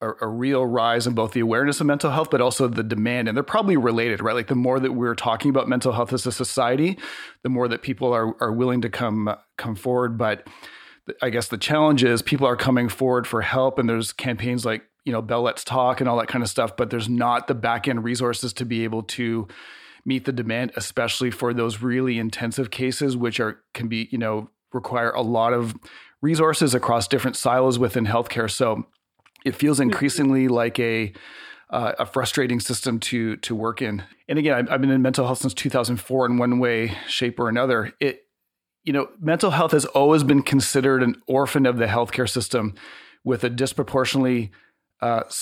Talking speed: 205 wpm